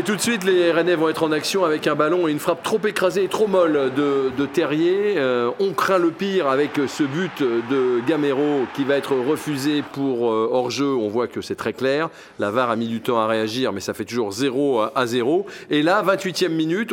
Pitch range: 125-165 Hz